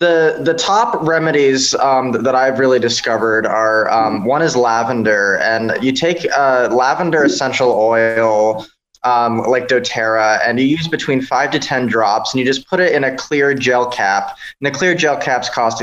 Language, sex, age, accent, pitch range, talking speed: English, male, 20-39, American, 115-135 Hz, 180 wpm